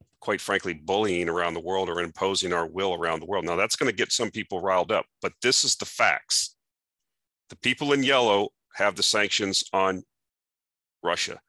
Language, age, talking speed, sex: English, 40-59, 190 wpm, male